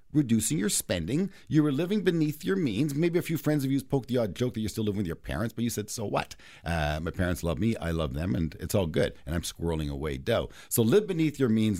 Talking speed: 270 wpm